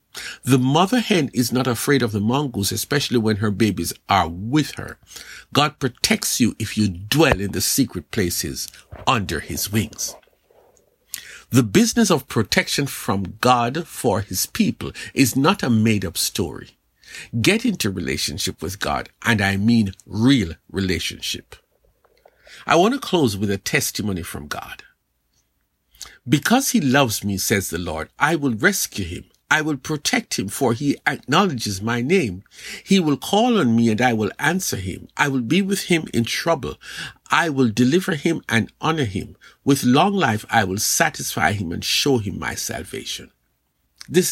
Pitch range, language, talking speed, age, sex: 105-165 Hz, English, 160 wpm, 50-69, male